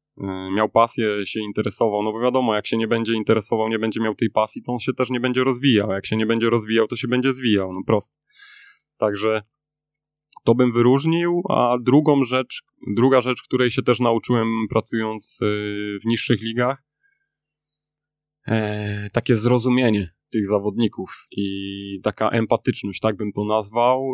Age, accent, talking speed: 20-39, native, 155 wpm